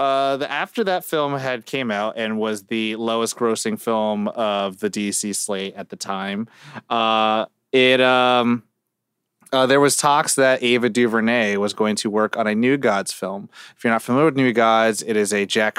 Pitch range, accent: 105-125 Hz, American